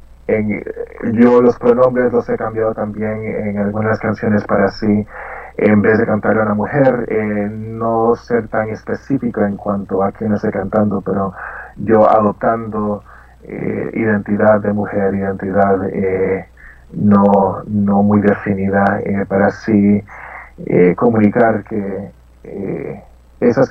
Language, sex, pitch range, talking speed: Spanish, male, 100-110 Hz, 130 wpm